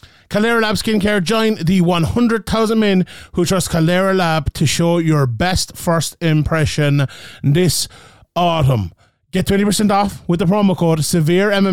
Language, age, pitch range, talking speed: English, 30-49, 150-185 Hz, 140 wpm